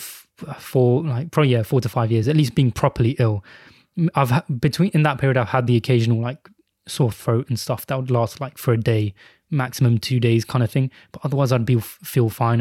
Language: English